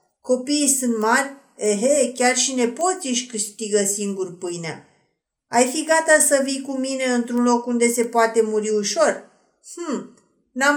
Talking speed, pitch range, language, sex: 150 wpm, 215-280 Hz, Romanian, female